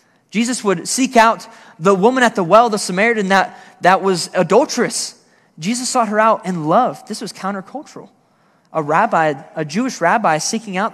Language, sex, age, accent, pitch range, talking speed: English, male, 20-39, American, 165-220 Hz, 170 wpm